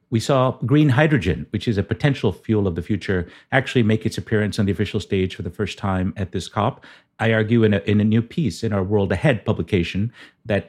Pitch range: 95-115 Hz